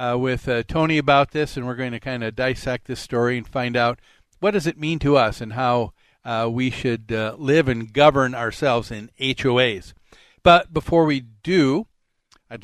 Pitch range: 125-160 Hz